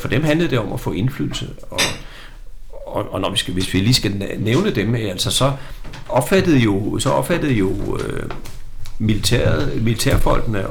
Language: Danish